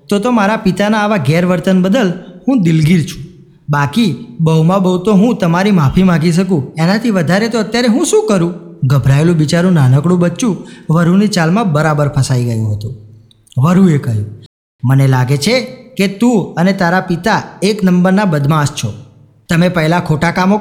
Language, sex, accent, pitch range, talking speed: Gujarati, male, native, 140-200 Hz, 155 wpm